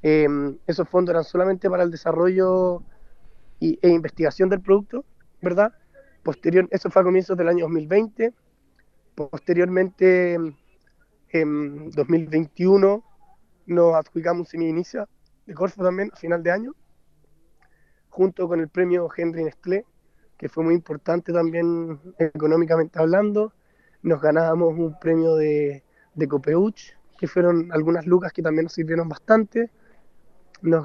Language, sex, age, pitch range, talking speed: Spanish, male, 20-39, 160-185 Hz, 130 wpm